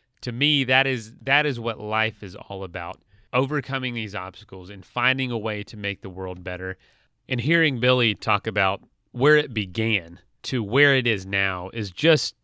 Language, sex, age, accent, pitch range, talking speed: English, male, 30-49, American, 105-135 Hz, 185 wpm